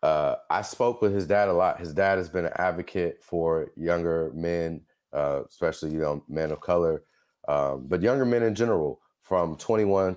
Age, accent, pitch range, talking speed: 30-49, American, 75-95 Hz, 190 wpm